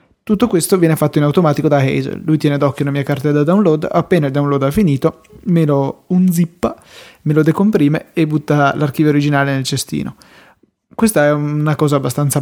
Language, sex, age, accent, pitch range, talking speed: Italian, male, 20-39, native, 145-165 Hz, 185 wpm